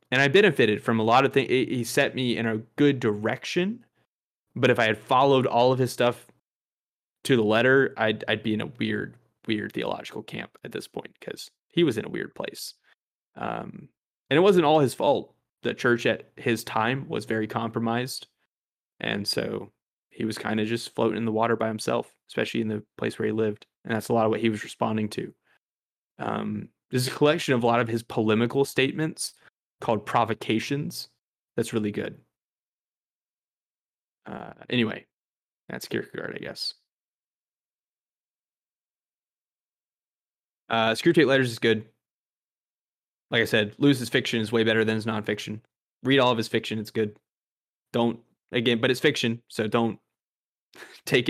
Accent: American